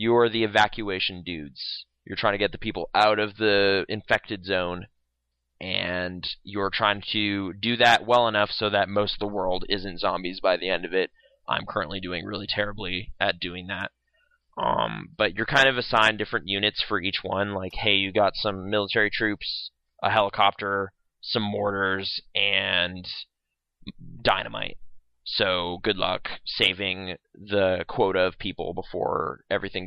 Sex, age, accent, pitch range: male, 20-39, American, 95-115 Hz